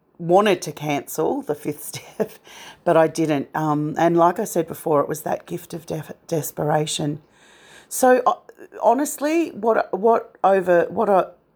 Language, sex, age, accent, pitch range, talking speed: English, female, 40-59, Australian, 160-190 Hz, 155 wpm